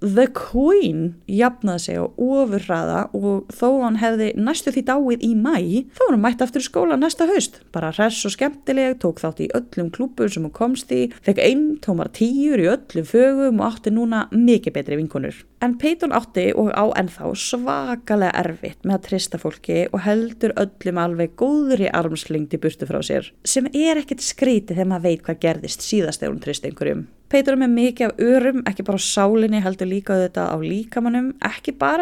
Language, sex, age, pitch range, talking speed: English, female, 30-49, 180-255 Hz, 190 wpm